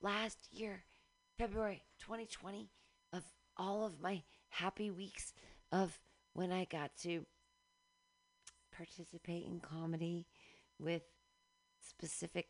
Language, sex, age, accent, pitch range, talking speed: English, female, 40-59, American, 160-225 Hz, 95 wpm